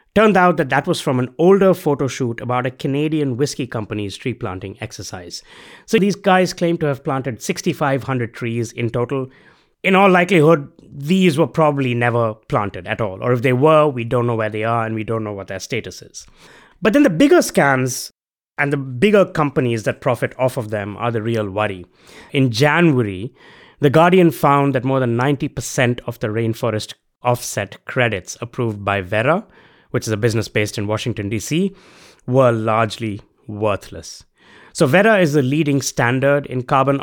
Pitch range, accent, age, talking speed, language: 115-155 Hz, Indian, 20-39, 180 wpm, English